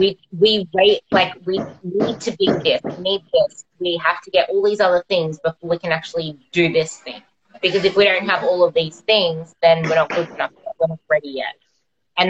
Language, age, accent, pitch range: English, 20-39, Australian, 170-205 Hz